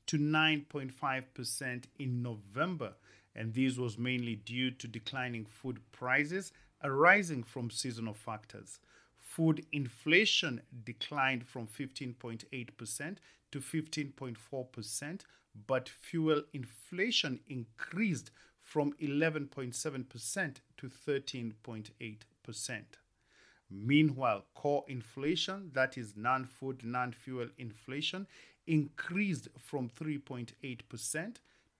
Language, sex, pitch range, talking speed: English, male, 120-150 Hz, 80 wpm